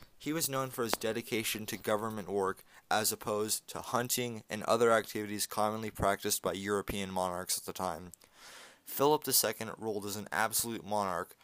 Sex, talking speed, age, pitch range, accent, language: male, 165 wpm, 20-39, 100-115 Hz, American, English